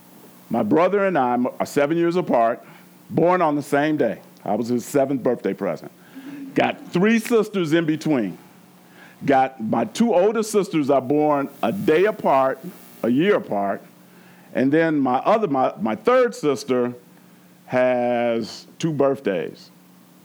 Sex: male